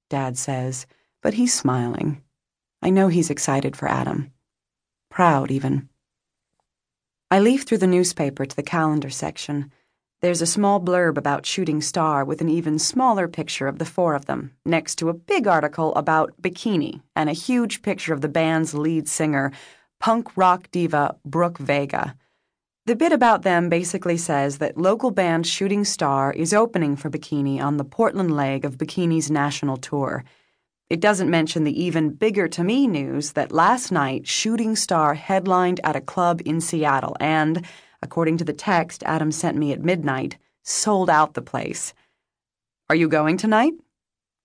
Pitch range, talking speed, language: 145-185 Hz, 160 wpm, English